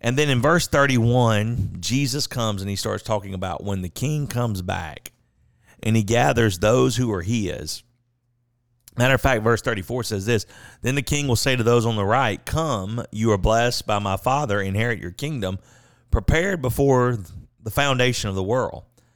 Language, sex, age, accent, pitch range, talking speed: English, male, 40-59, American, 105-130 Hz, 180 wpm